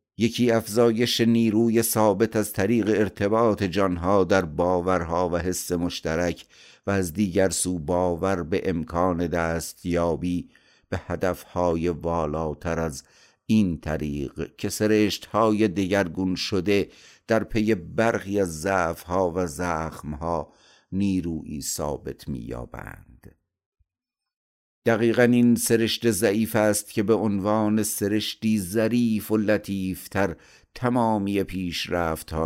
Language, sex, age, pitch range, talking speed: Persian, male, 50-69, 85-110 Hz, 105 wpm